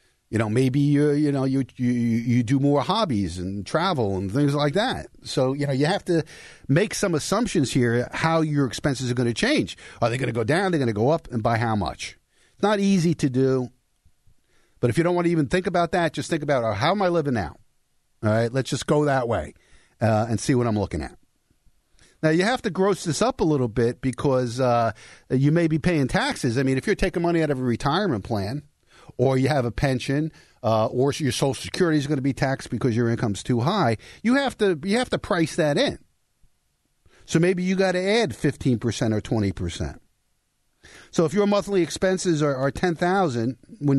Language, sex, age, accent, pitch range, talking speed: English, male, 50-69, American, 120-160 Hz, 230 wpm